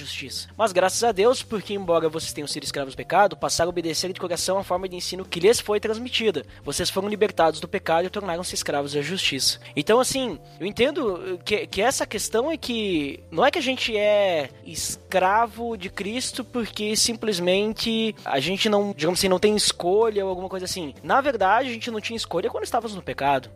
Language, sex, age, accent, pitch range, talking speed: Portuguese, male, 20-39, Brazilian, 150-230 Hz, 205 wpm